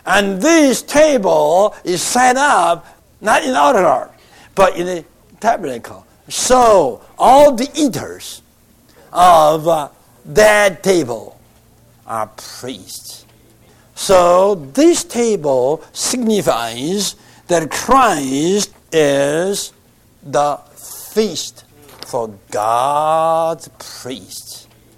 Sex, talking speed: male, 85 wpm